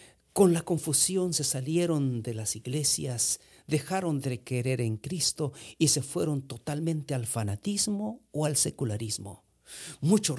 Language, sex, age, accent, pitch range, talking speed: English, male, 50-69, Mexican, 110-150 Hz, 135 wpm